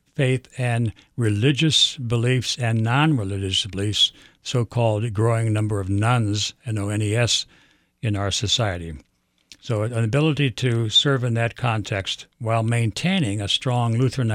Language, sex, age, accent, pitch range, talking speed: English, male, 60-79, American, 100-125 Hz, 125 wpm